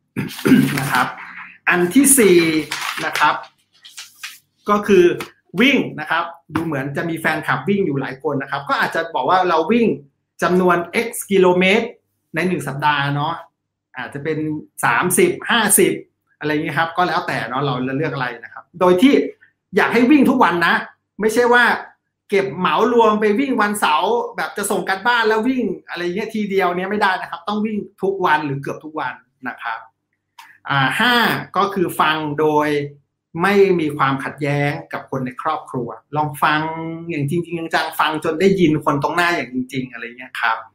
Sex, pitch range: male, 145-200 Hz